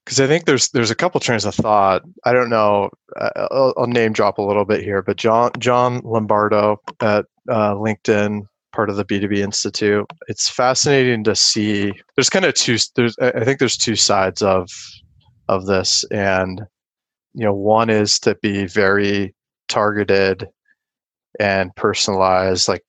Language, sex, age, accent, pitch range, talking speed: English, male, 20-39, American, 100-120 Hz, 170 wpm